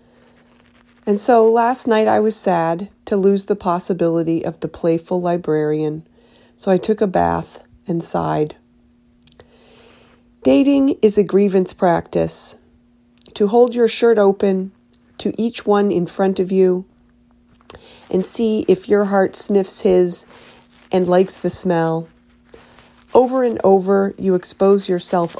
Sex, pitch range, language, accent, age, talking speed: female, 160-205 Hz, English, American, 40-59, 130 wpm